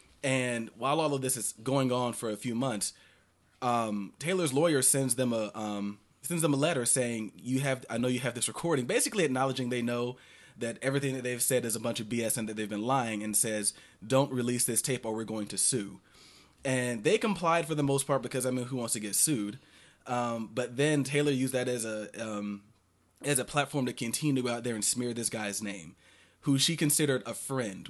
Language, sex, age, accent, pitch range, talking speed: English, male, 20-39, American, 110-135 Hz, 225 wpm